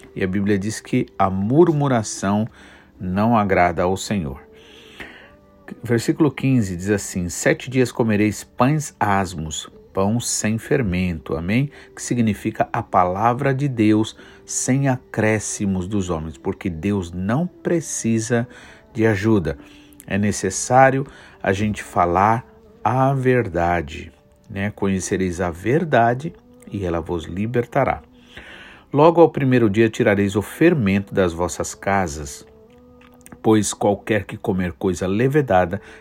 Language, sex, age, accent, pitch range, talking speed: Portuguese, male, 50-69, Brazilian, 95-125 Hz, 120 wpm